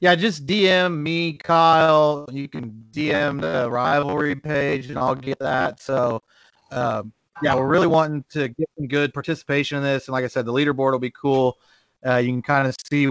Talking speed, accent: 195 wpm, American